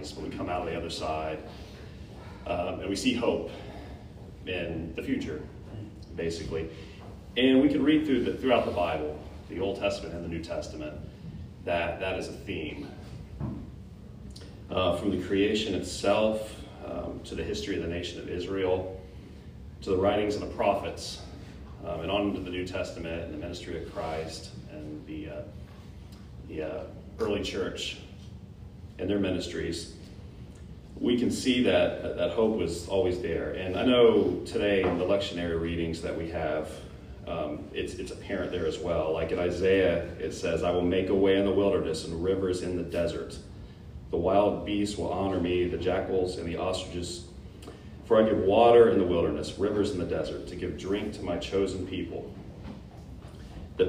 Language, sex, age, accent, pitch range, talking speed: English, male, 30-49, American, 85-100 Hz, 175 wpm